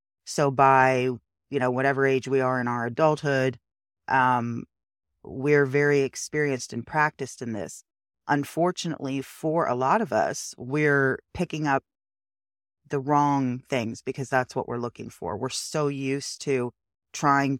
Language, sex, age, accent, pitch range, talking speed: English, female, 40-59, American, 120-145 Hz, 145 wpm